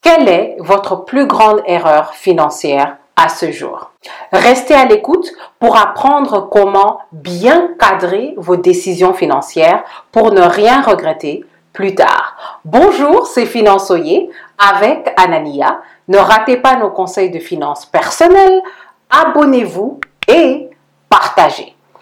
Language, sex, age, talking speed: French, female, 50-69, 115 wpm